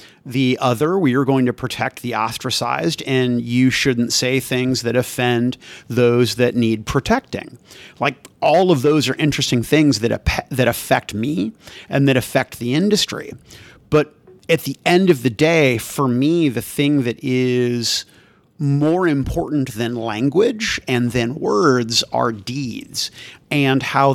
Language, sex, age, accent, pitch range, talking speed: English, male, 40-59, American, 120-145 Hz, 150 wpm